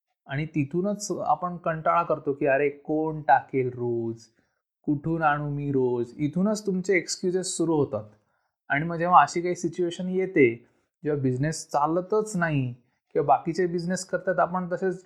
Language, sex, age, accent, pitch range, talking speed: Marathi, male, 20-39, native, 140-180 Hz, 145 wpm